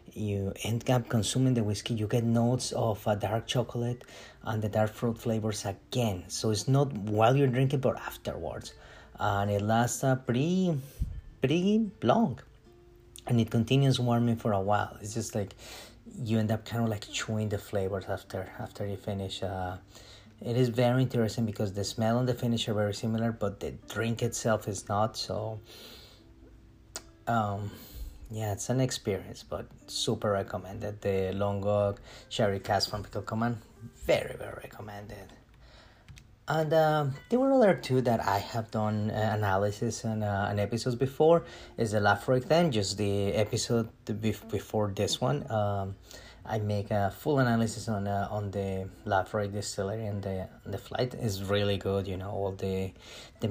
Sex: male